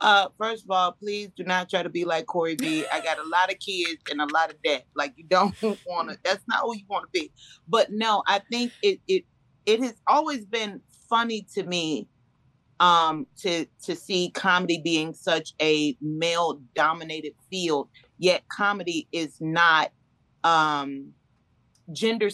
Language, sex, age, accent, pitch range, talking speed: English, female, 30-49, American, 155-195 Hz, 175 wpm